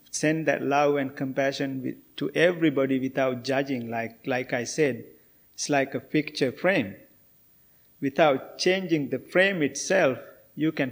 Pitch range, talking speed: 130-155 Hz, 135 wpm